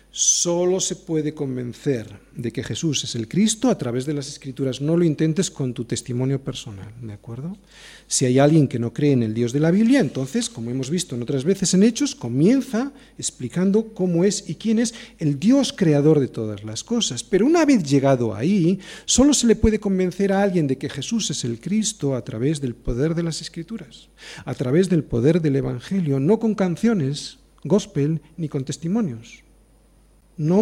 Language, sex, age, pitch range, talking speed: Spanish, male, 40-59, 135-205 Hz, 190 wpm